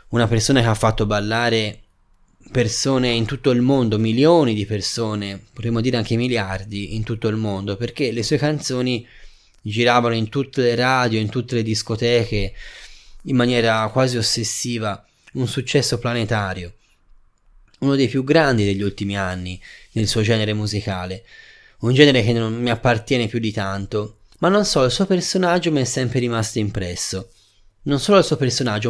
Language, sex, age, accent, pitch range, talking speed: Italian, male, 20-39, native, 110-135 Hz, 160 wpm